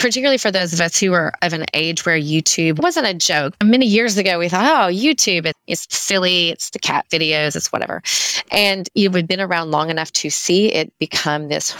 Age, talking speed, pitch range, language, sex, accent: 30-49, 220 wpm, 160-200 Hz, English, female, American